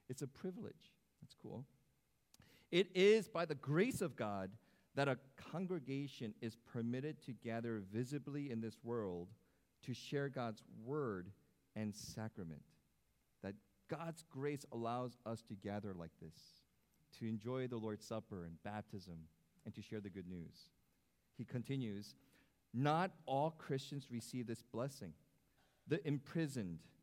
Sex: male